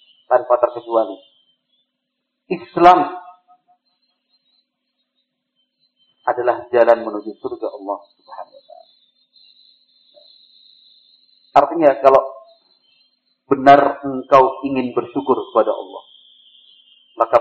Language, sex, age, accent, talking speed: Indonesian, male, 50-69, native, 65 wpm